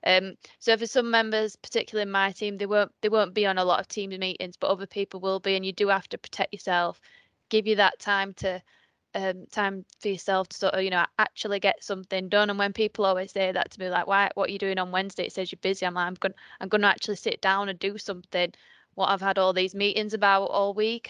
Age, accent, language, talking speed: 20-39, British, English, 260 wpm